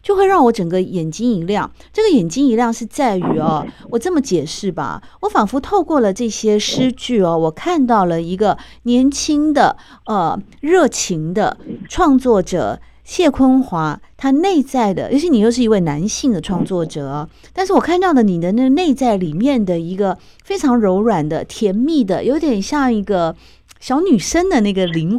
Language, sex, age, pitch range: Chinese, female, 50-69, 175-265 Hz